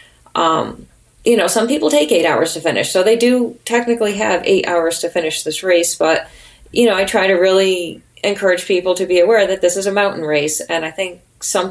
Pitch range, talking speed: 165-200 Hz, 220 wpm